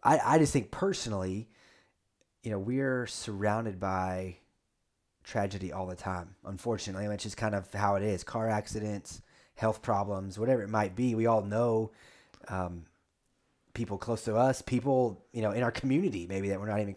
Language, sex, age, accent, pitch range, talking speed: English, male, 30-49, American, 100-120 Hz, 175 wpm